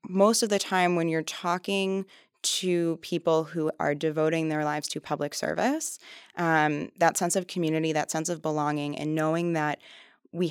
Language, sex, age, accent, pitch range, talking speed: English, female, 20-39, American, 150-180 Hz, 170 wpm